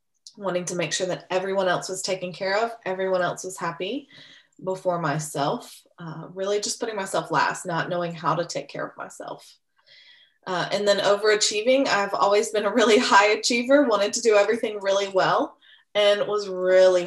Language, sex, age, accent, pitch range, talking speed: English, female, 20-39, American, 175-210 Hz, 180 wpm